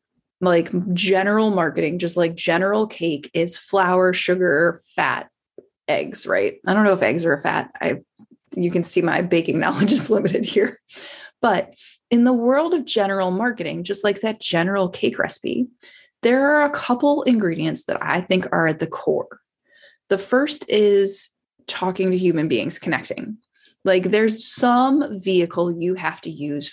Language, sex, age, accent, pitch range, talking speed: English, female, 20-39, American, 180-245 Hz, 160 wpm